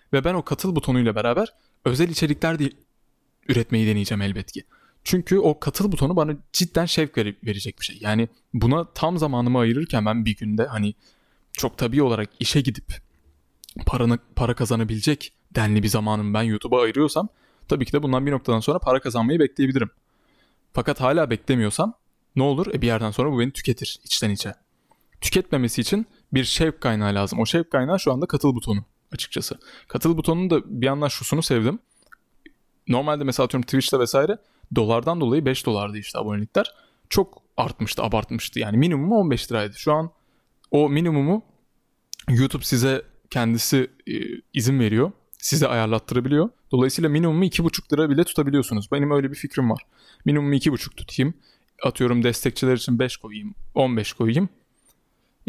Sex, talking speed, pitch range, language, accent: male, 155 wpm, 115-155 Hz, Turkish, native